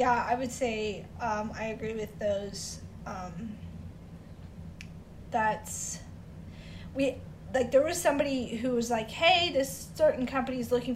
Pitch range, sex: 195-250 Hz, female